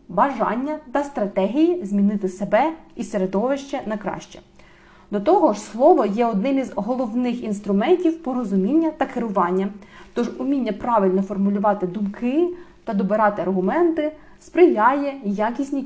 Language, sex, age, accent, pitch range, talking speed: Ukrainian, female, 30-49, native, 200-300 Hz, 115 wpm